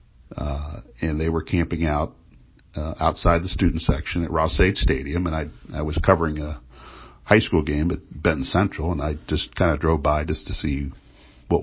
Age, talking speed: 60-79, 185 wpm